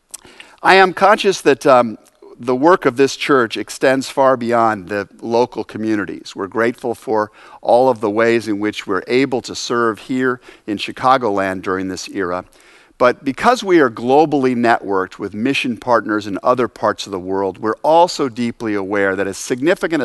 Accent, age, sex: American, 50-69, male